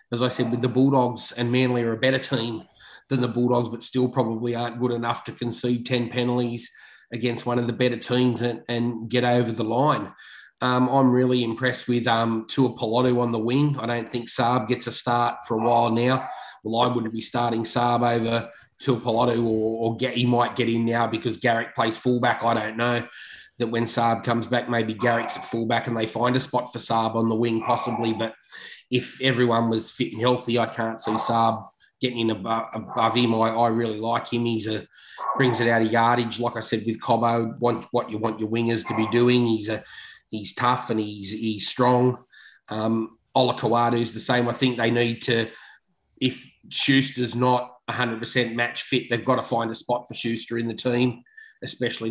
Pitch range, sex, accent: 115-125 Hz, male, Australian